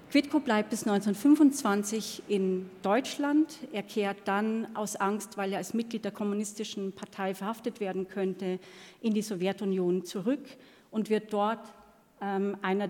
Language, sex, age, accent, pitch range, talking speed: German, female, 40-59, German, 190-225 Hz, 140 wpm